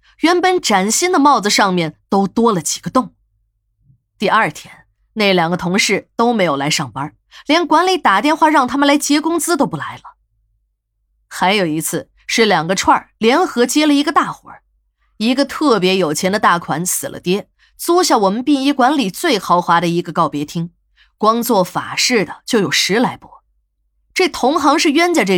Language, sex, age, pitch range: Chinese, female, 20-39, 170-280 Hz